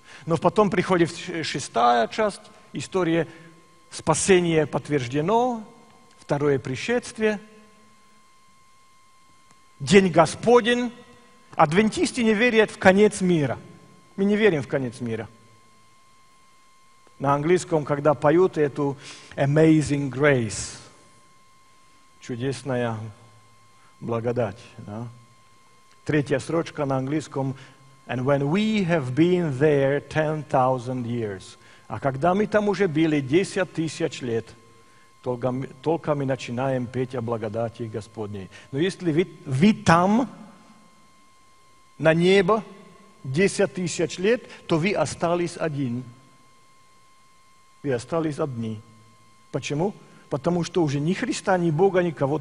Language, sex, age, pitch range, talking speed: Russian, male, 50-69, 125-185 Hz, 100 wpm